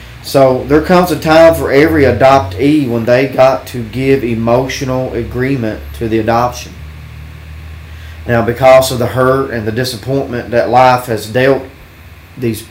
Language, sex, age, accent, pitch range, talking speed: English, male, 40-59, American, 105-130 Hz, 145 wpm